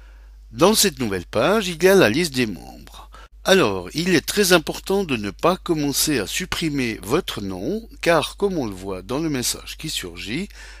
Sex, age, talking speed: male, 60-79, 190 wpm